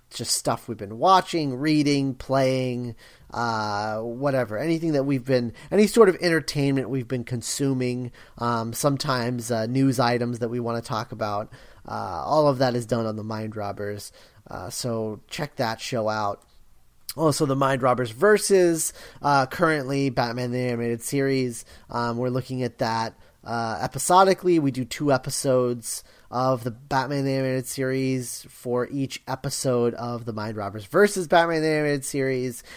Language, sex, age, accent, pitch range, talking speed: English, male, 30-49, American, 115-140 Hz, 160 wpm